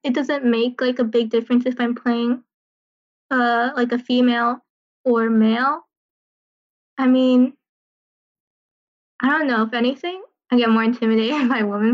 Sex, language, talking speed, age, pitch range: female, English, 145 wpm, 10-29, 225-255 Hz